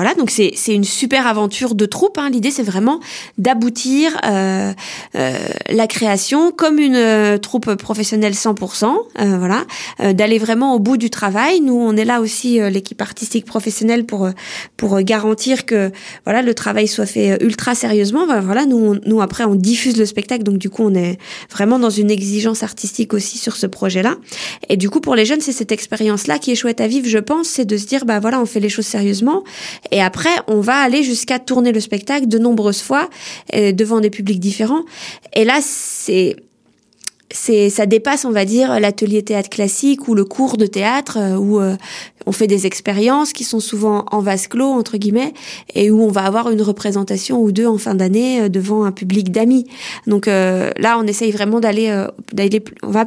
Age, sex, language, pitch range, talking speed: 20-39, female, French, 205-245 Hz, 200 wpm